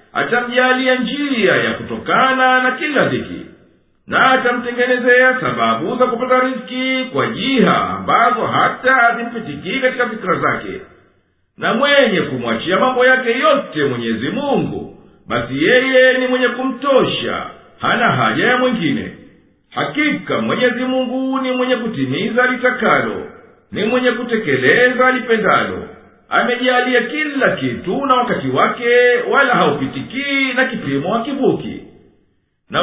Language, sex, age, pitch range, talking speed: English, male, 50-69, 235-255 Hz, 115 wpm